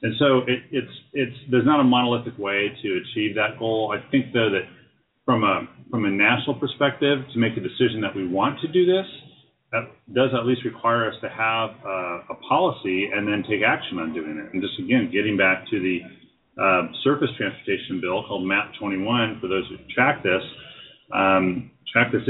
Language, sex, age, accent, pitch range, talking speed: English, male, 30-49, American, 95-120 Hz, 200 wpm